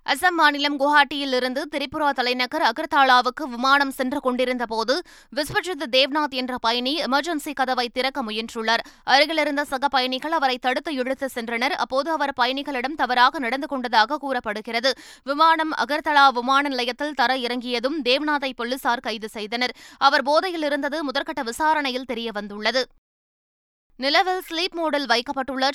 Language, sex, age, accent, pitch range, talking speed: Tamil, female, 20-39, native, 245-295 Hz, 120 wpm